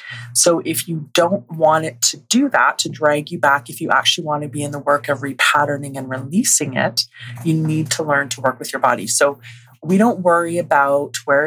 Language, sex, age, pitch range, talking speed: English, female, 30-49, 135-160 Hz, 220 wpm